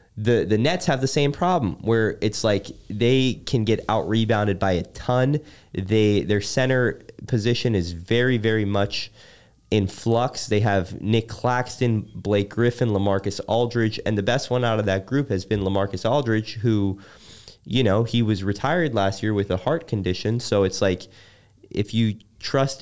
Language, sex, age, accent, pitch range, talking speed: English, male, 20-39, American, 95-120 Hz, 170 wpm